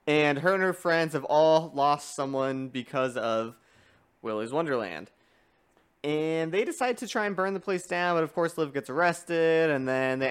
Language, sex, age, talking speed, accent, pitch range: English, male, 20-39, 185 wpm, American, 125-170 Hz